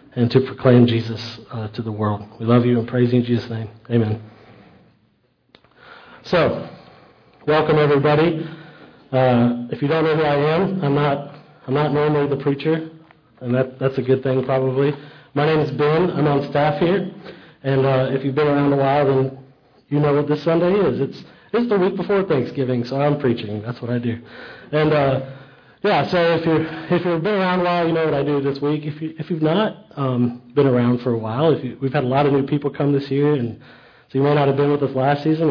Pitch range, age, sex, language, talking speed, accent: 125-150 Hz, 40-59, male, English, 225 wpm, American